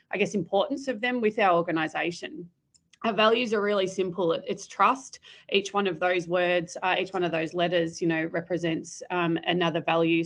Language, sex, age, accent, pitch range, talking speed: English, female, 20-39, Australian, 165-195 Hz, 185 wpm